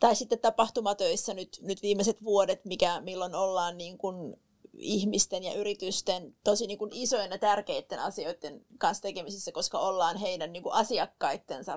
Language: Finnish